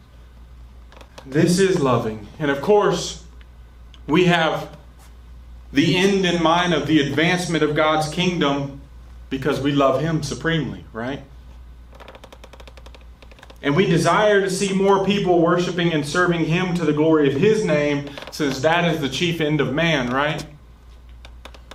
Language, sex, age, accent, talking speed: English, male, 30-49, American, 140 wpm